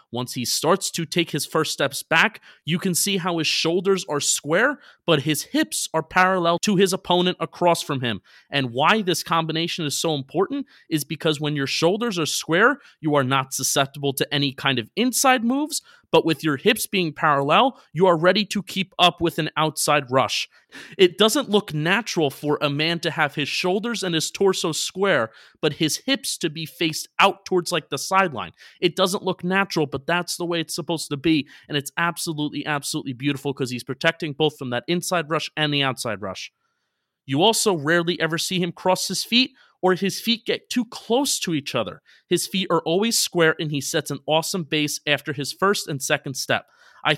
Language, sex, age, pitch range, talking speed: English, male, 30-49, 145-185 Hz, 200 wpm